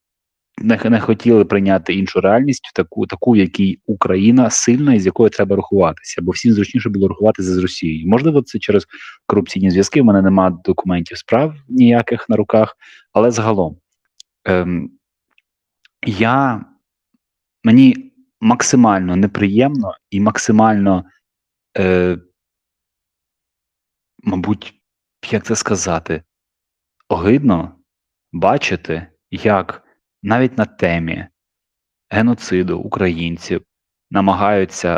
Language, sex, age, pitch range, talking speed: Ukrainian, male, 30-49, 90-110 Hz, 100 wpm